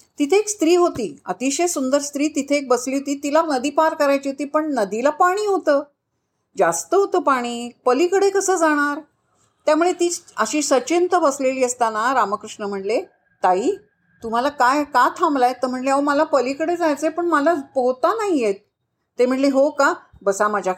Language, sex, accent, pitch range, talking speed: Marathi, female, native, 240-325 Hz, 115 wpm